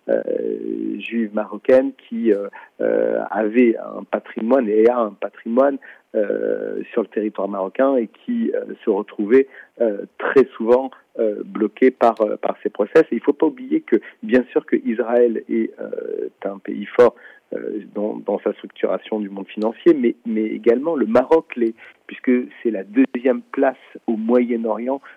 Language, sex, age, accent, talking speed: French, male, 50-69, French, 170 wpm